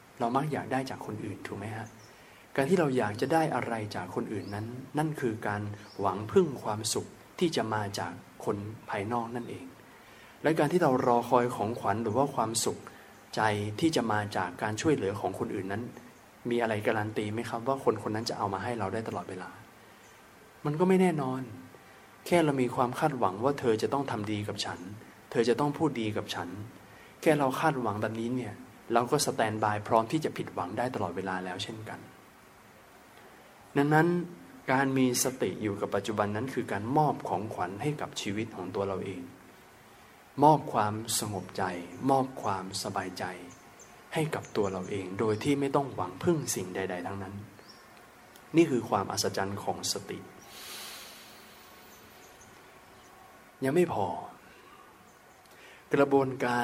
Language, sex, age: Thai, male, 20-39